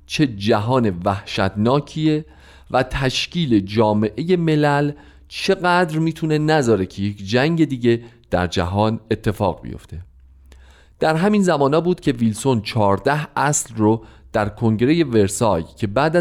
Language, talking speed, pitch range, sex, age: Persian, 120 wpm, 90-140 Hz, male, 40-59